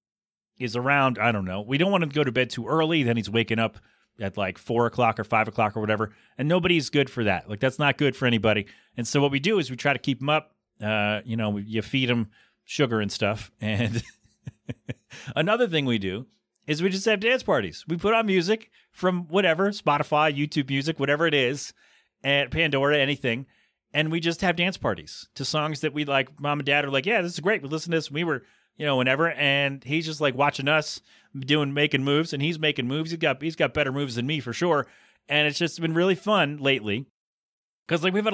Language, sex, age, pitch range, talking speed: English, male, 30-49, 120-160 Hz, 235 wpm